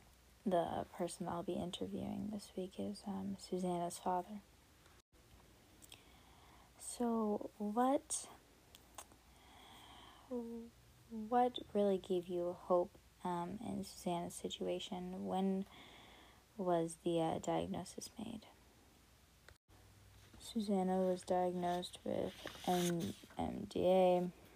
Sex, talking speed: female, 85 wpm